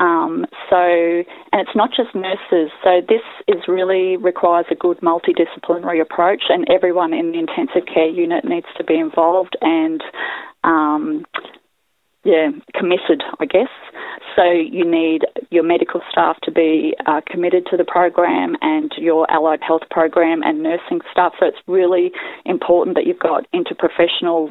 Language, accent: English, Australian